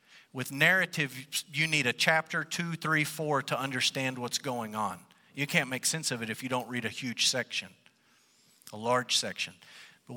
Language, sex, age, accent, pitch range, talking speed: English, male, 50-69, American, 125-165 Hz, 185 wpm